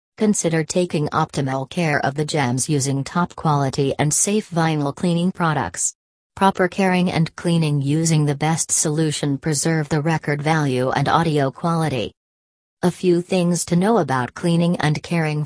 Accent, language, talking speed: American, English, 150 wpm